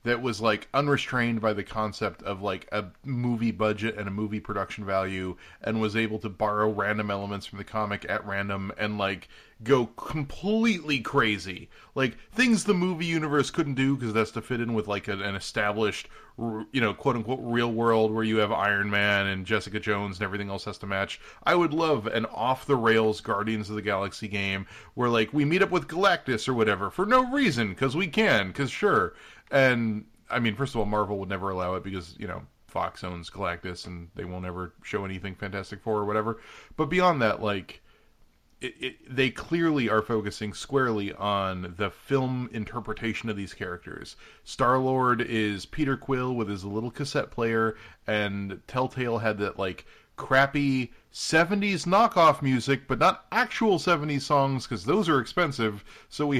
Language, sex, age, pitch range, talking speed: English, male, 30-49, 100-135 Hz, 180 wpm